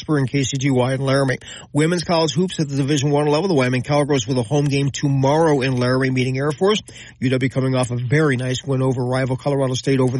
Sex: male